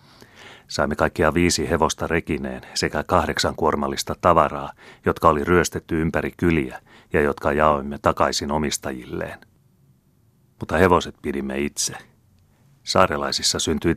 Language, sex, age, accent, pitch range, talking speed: Finnish, male, 30-49, native, 70-90 Hz, 105 wpm